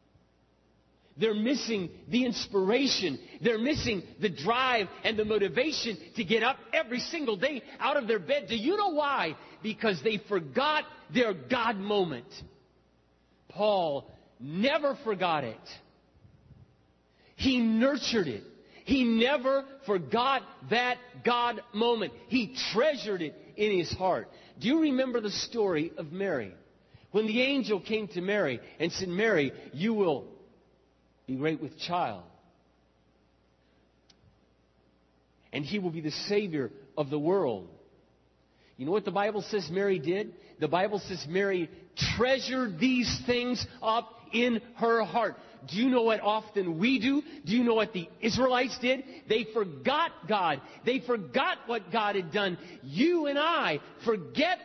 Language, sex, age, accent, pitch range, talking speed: English, male, 50-69, American, 165-245 Hz, 140 wpm